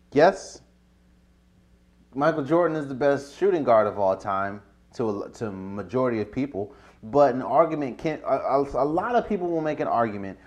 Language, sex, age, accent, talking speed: English, male, 30-49, American, 170 wpm